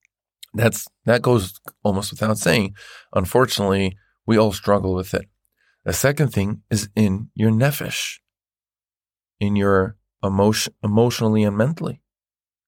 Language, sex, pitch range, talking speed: English, male, 100-115 Hz, 120 wpm